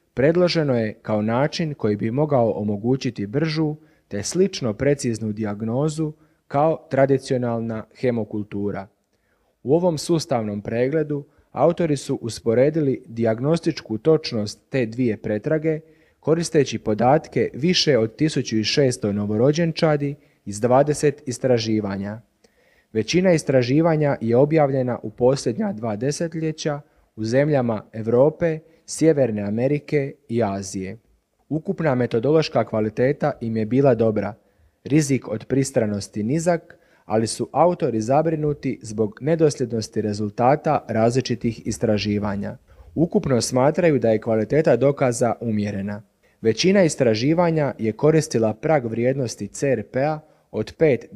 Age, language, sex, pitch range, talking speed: 30-49, Croatian, male, 110-155 Hz, 105 wpm